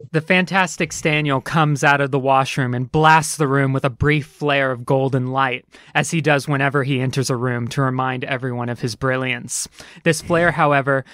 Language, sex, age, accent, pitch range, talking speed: English, male, 20-39, American, 130-150 Hz, 195 wpm